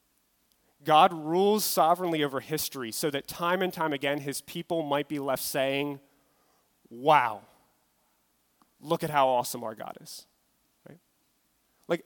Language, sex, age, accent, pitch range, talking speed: English, male, 30-49, American, 140-215 Hz, 135 wpm